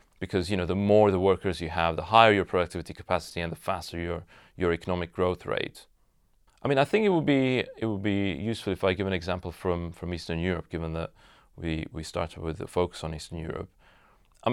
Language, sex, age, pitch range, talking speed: English, male, 30-49, 85-105 Hz, 225 wpm